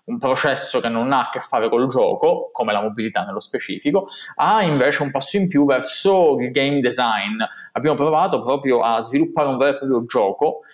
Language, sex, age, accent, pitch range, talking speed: Italian, male, 20-39, native, 125-170 Hz, 195 wpm